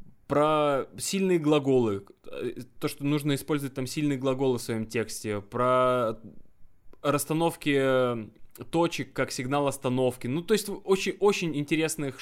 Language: Russian